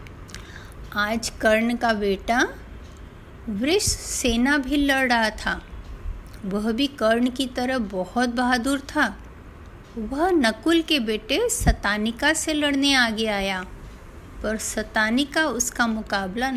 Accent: native